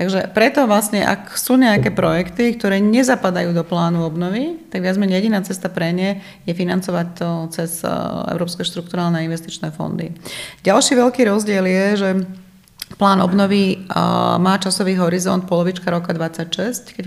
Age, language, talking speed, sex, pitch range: 30-49, Slovak, 145 wpm, female, 175-200 Hz